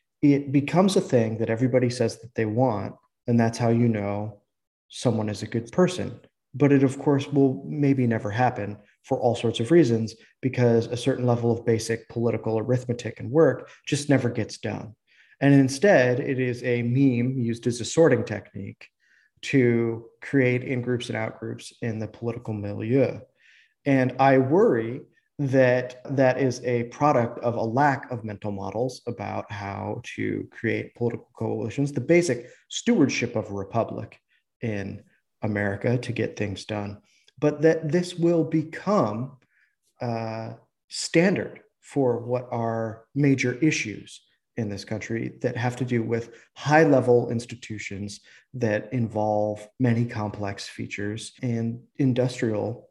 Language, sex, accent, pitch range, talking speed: English, male, American, 110-130 Hz, 145 wpm